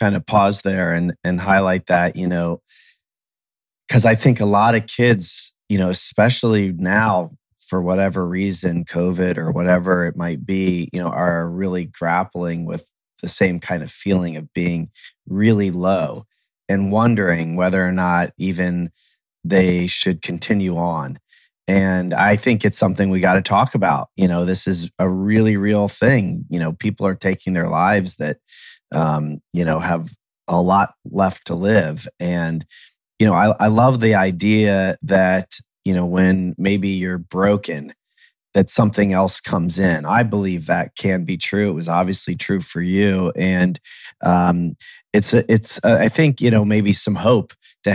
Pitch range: 90-105 Hz